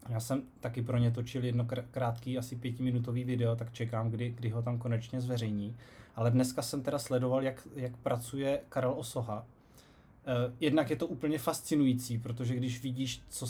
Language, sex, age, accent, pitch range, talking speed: Czech, male, 20-39, native, 120-140 Hz, 170 wpm